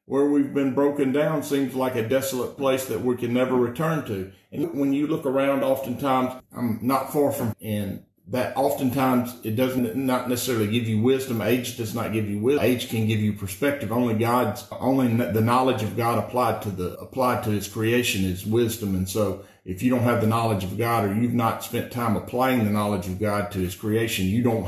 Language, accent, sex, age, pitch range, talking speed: English, American, male, 50-69, 105-130 Hz, 215 wpm